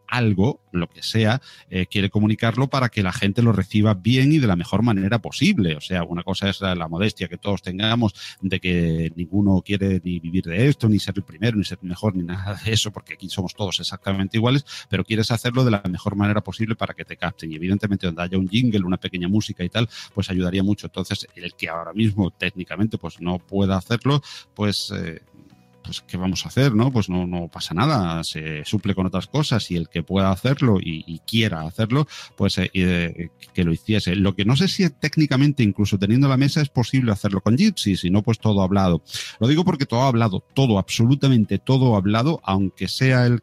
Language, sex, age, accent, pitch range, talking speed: Spanish, male, 40-59, Spanish, 90-115 Hz, 220 wpm